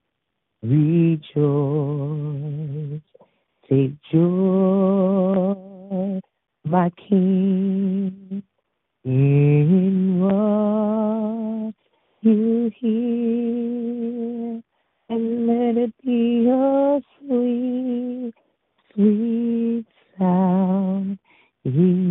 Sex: female